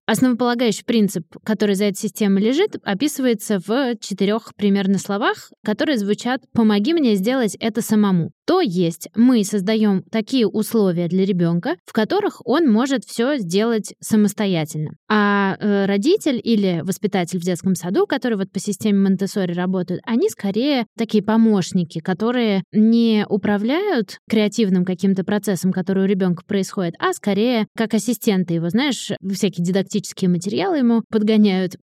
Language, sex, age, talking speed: Russian, female, 20-39, 140 wpm